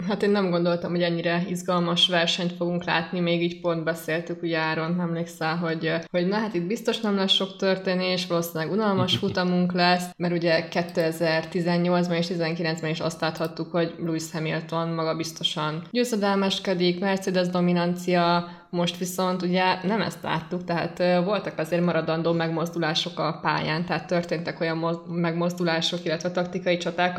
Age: 20-39